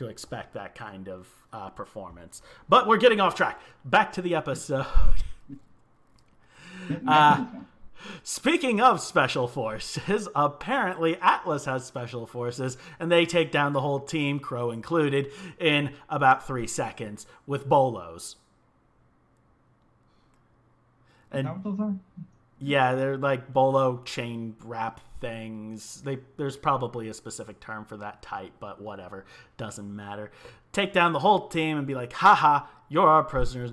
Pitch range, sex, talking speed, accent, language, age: 120-160 Hz, male, 130 wpm, American, English, 30-49